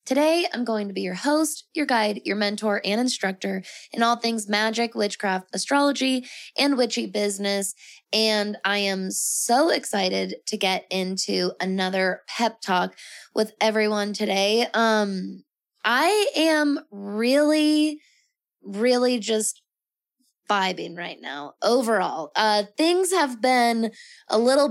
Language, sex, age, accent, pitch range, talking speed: English, female, 20-39, American, 195-240 Hz, 125 wpm